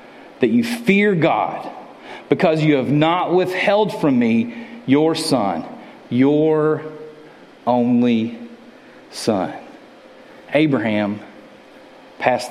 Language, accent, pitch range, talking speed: English, American, 155-240 Hz, 85 wpm